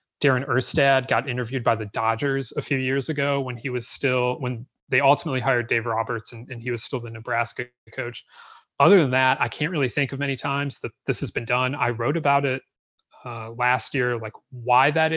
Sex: male